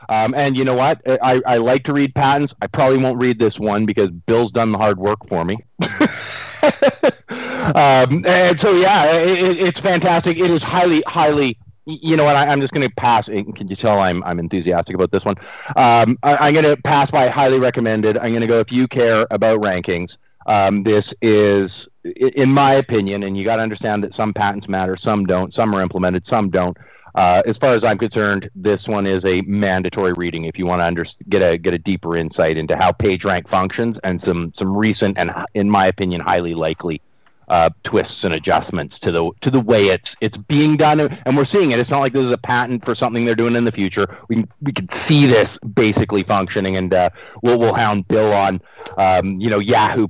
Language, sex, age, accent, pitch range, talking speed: English, male, 30-49, American, 95-130 Hz, 215 wpm